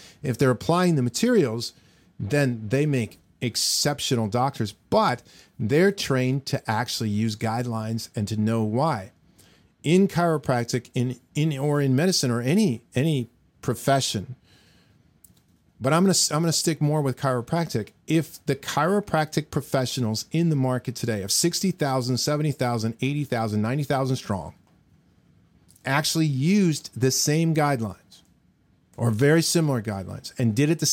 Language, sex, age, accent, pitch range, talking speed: English, male, 40-59, American, 115-160 Hz, 135 wpm